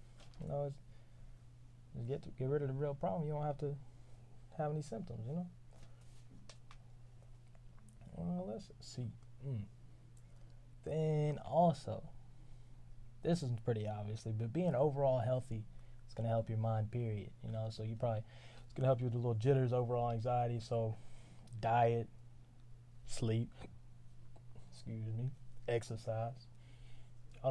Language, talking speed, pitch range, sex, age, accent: English, 140 wpm, 115-130 Hz, male, 20-39, American